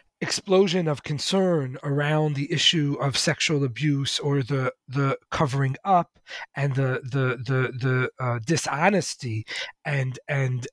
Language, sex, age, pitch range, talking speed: English, male, 40-59, 135-175 Hz, 130 wpm